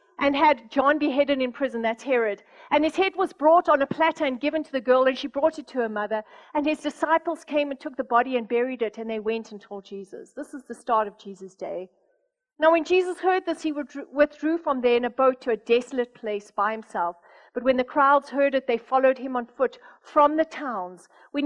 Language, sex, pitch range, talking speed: English, female, 215-290 Hz, 240 wpm